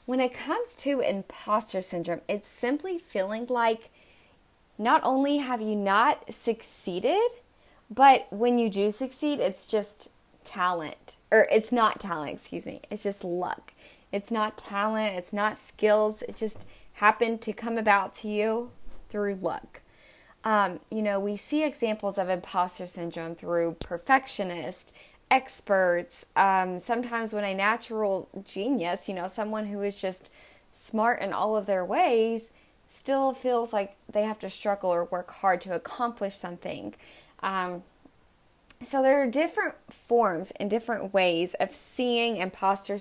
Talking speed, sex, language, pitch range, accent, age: 145 wpm, female, English, 190-235 Hz, American, 20-39